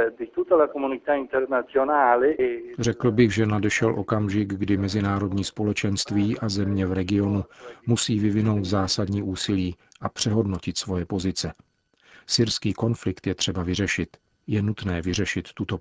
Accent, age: native, 40-59